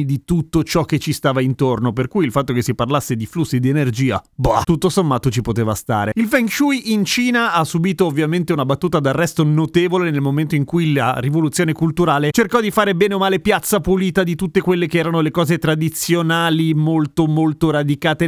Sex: male